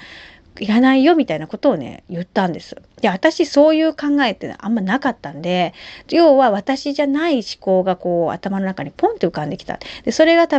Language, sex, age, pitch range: Japanese, female, 40-59, 175-245 Hz